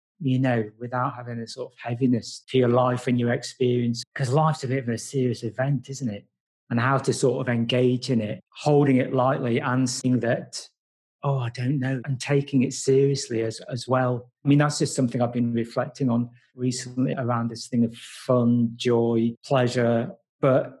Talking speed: 195 wpm